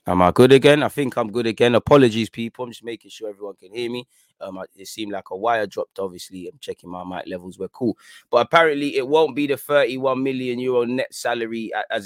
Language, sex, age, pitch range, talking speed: English, male, 20-39, 105-135 Hz, 230 wpm